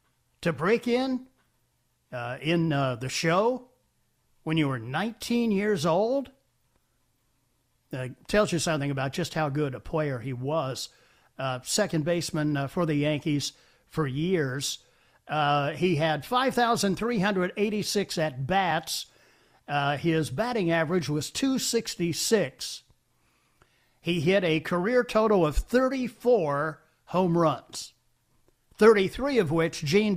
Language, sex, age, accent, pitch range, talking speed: English, male, 50-69, American, 140-195 Hz, 115 wpm